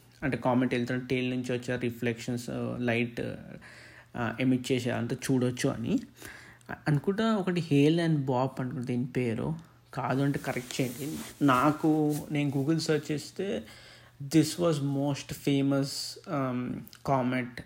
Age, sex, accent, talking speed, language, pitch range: 20-39, male, native, 120 wpm, Telugu, 120-145 Hz